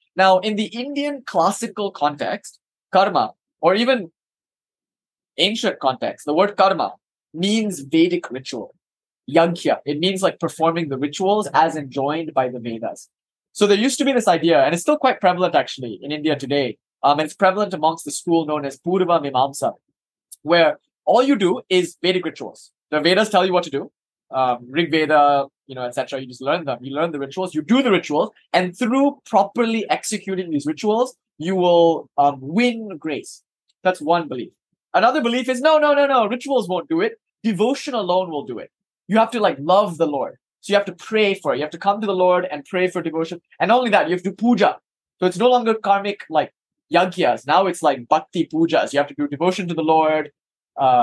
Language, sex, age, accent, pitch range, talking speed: English, male, 20-39, Indian, 155-215 Hz, 200 wpm